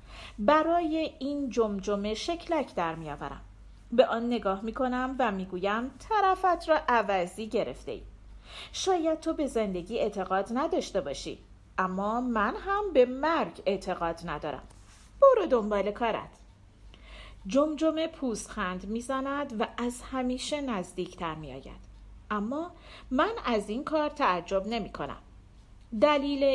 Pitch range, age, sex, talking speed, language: 195-280 Hz, 40-59, female, 120 wpm, Persian